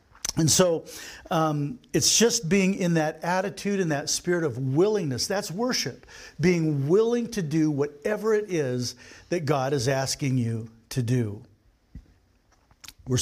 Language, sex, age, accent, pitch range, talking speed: English, male, 50-69, American, 140-220 Hz, 140 wpm